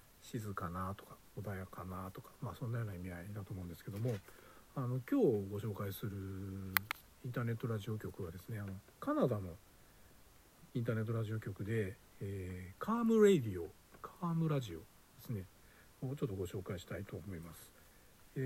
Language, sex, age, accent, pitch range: Japanese, male, 60-79, native, 95-140 Hz